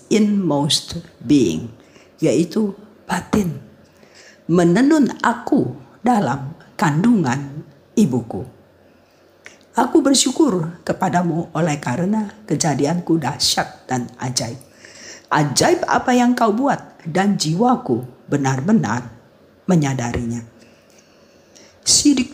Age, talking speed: 50-69, 80 wpm